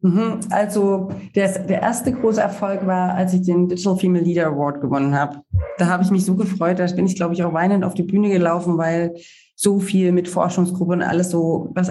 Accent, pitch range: German, 165-195 Hz